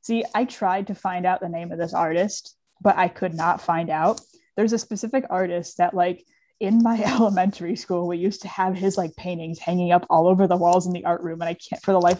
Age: 20-39